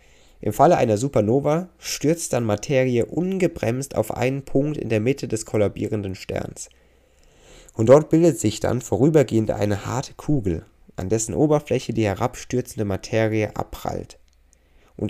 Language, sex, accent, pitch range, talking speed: German, male, German, 100-125 Hz, 135 wpm